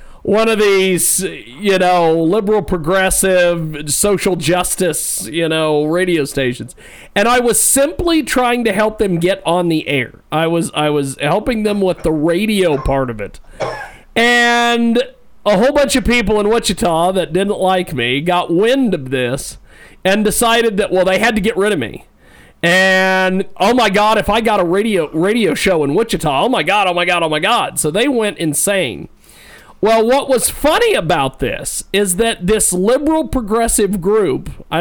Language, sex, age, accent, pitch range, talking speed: English, male, 40-59, American, 170-220 Hz, 180 wpm